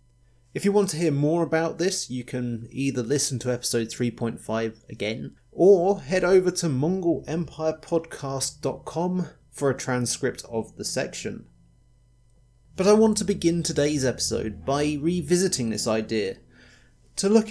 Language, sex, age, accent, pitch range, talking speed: English, male, 30-49, British, 120-165 Hz, 135 wpm